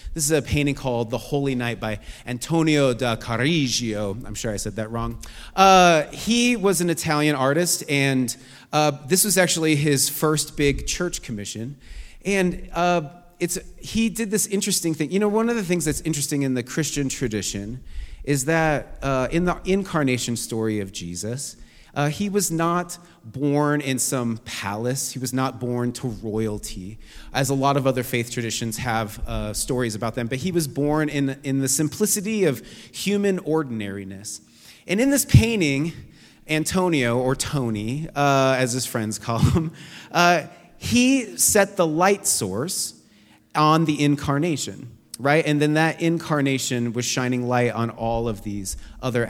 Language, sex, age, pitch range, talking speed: English, male, 30-49, 115-165 Hz, 165 wpm